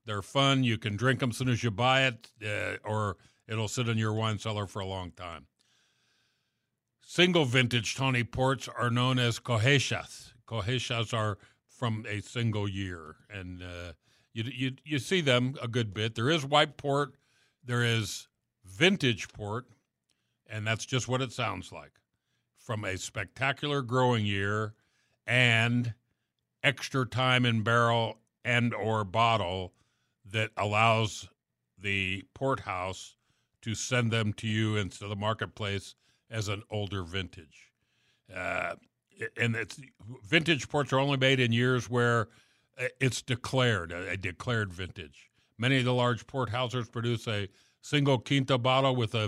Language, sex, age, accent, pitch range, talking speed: English, male, 50-69, American, 105-125 Hz, 145 wpm